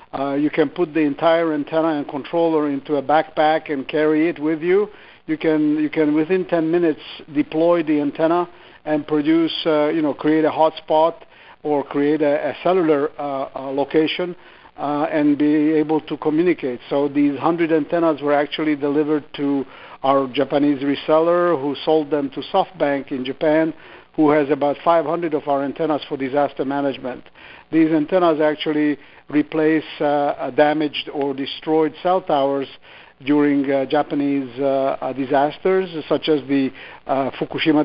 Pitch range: 140-160 Hz